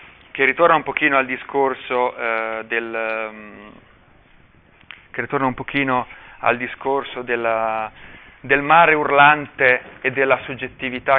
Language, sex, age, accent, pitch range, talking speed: Italian, male, 30-49, native, 120-140 Hz, 115 wpm